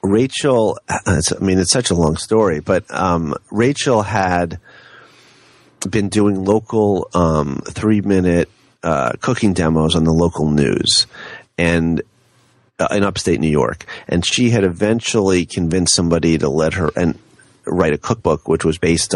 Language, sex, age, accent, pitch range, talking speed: English, male, 30-49, American, 80-105 Hz, 135 wpm